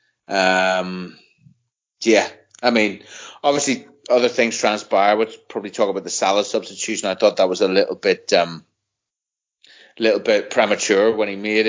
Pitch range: 100-135 Hz